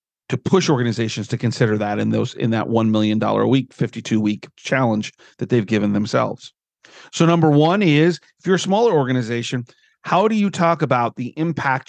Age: 40-59